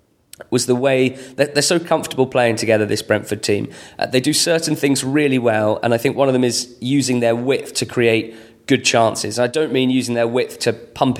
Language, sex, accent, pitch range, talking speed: English, male, British, 110-130 Hz, 225 wpm